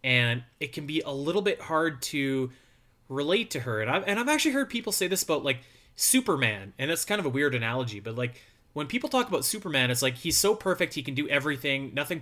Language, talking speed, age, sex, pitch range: English, 230 wpm, 30-49, male, 125-160 Hz